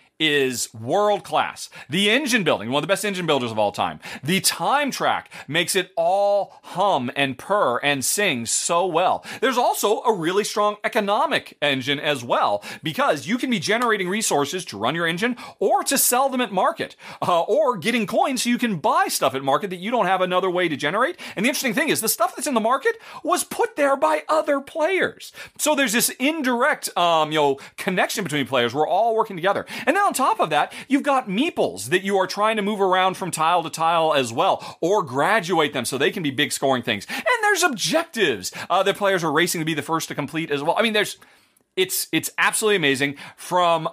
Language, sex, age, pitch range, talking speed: English, male, 40-59, 140-225 Hz, 215 wpm